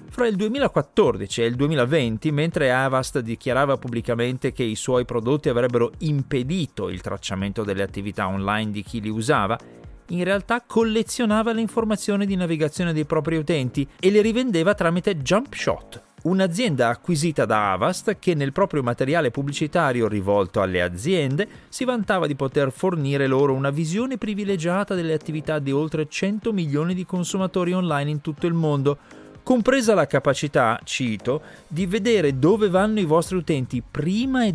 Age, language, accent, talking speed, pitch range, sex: 40-59, Italian, native, 155 wpm, 125-180 Hz, male